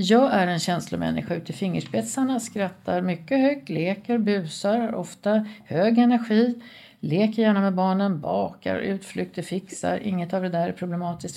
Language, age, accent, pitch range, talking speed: Swedish, 50-69, native, 180-230 Hz, 150 wpm